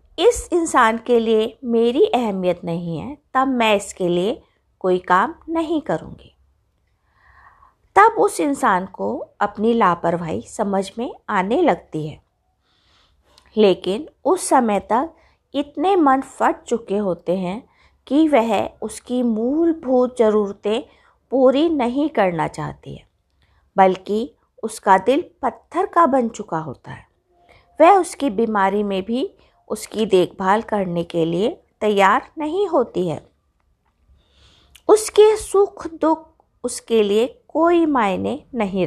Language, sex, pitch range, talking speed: Hindi, female, 185-285 Hz, 120 wpm